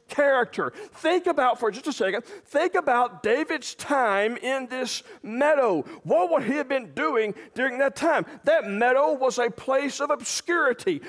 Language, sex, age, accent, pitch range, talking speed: English, male, 40-59, American, 235-320 Hz, 160 wpm